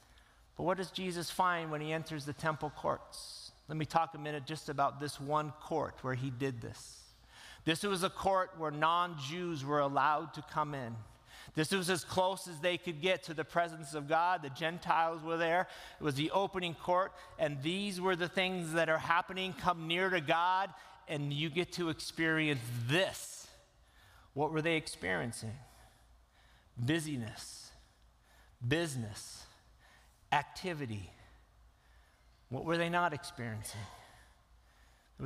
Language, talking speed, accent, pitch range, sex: English, 150 wpm, American, 140-185 Hz, male